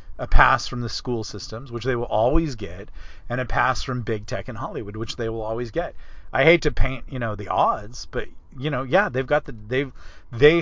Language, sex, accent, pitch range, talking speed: English, male, American, 105-130 Hz, 230 wpm